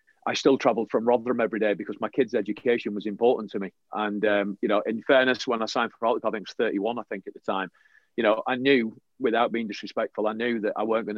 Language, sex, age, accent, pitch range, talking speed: English, male, 40-59, British, 100-110 Hz, 265 wpm